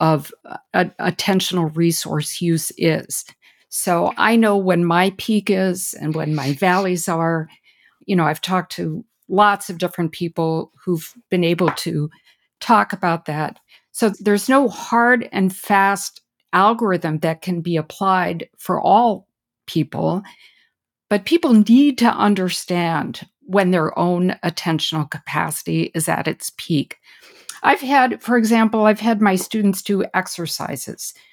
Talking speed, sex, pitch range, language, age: 140 wpm, female, 170-215 Hz, English, 50-69